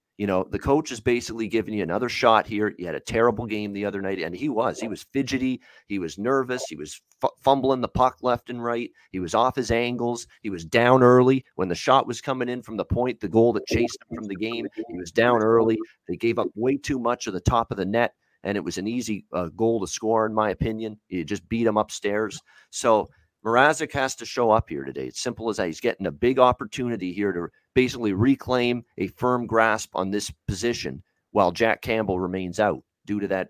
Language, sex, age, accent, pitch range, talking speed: English, male, 40-59, American, 105-125 Hz, 235 wpm